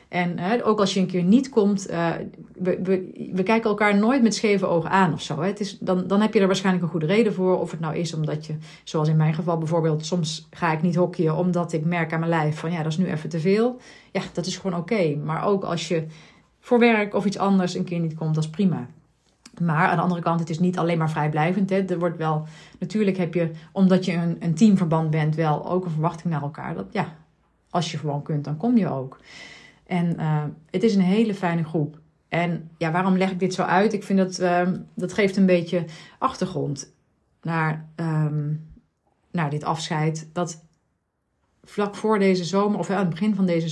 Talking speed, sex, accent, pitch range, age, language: 225 wpm, female, Dutch, 155-185 Hz, 30-49, Dutch